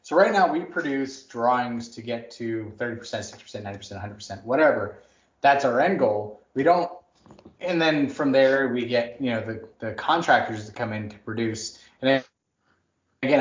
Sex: male